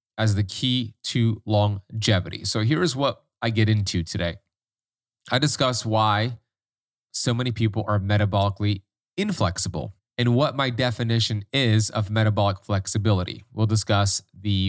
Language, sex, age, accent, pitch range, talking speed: English, male, 30-49, American, 100-125 Hz, 130 wpm